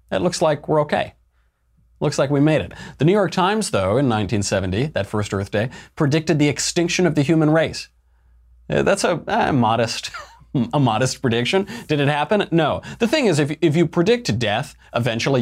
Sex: male